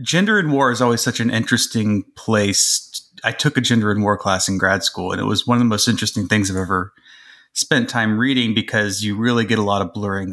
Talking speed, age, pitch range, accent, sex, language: 240 wpm, 30-49, 105-130 Hz, American, male, English